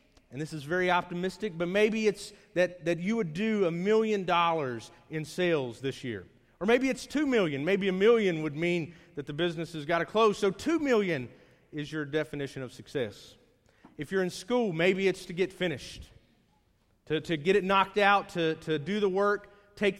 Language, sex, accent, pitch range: English, male, American, 150-195 Hz